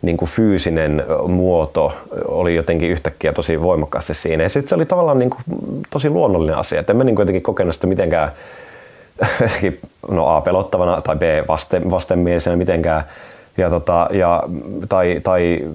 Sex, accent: male, native